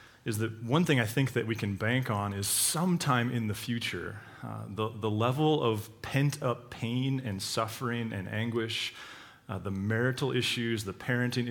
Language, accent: English, American